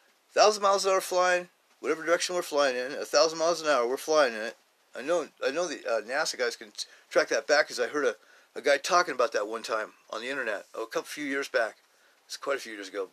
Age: 40-59